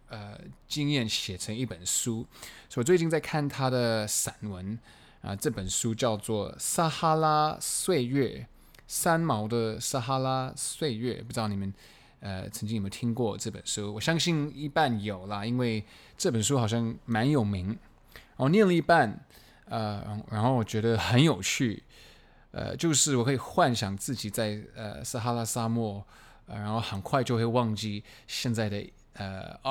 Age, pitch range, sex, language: 20-39, 105-130 Hz, male, Chinese